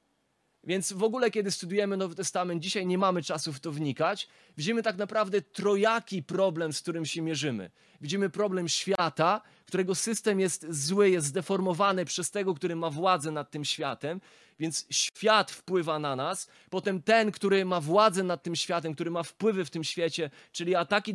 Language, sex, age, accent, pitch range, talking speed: Polish, male, 20-39, native, 160-195 Hz, 175 wpm